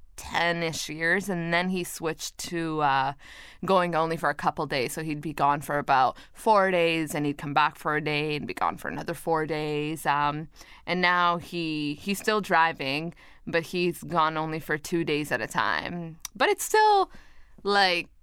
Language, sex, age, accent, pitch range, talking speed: English, female, 20-39, American, 160-185 Hz, 190 wpm